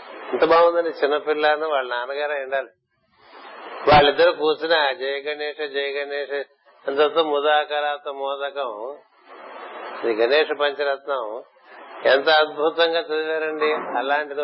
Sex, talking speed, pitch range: male, 70 wpm, 140-155 Hz